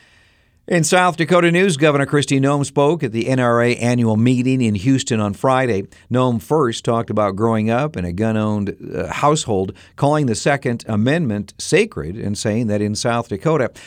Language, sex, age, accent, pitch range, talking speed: English, male, 60-79, American, 105-135 Hz, 165 wpm